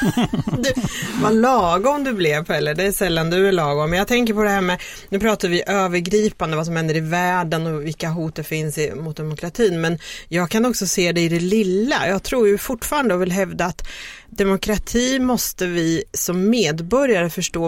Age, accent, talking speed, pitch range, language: 30-49, native, 190 wpm, 165-205 Hz, Swedish